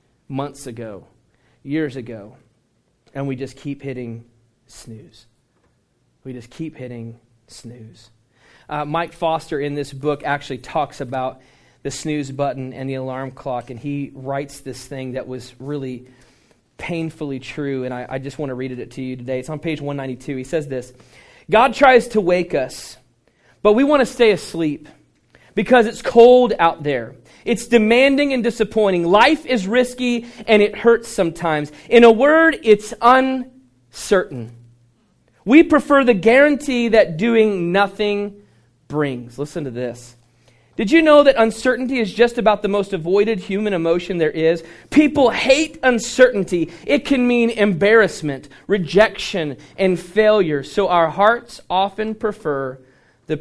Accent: American